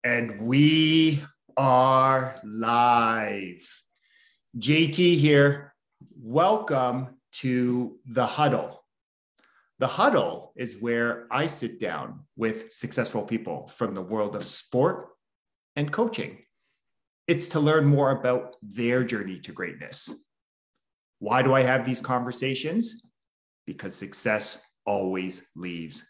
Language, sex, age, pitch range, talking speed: English, male, 40-59, 105-135 Hz, 105 wpm